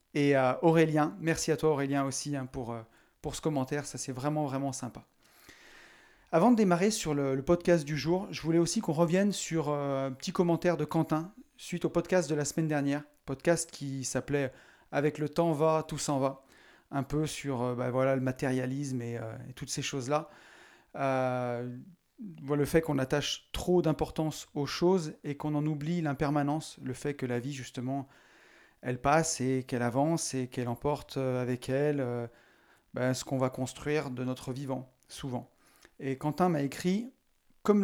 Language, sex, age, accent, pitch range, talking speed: French, male, 30-49, French, 135-165 Hz, 185 wpm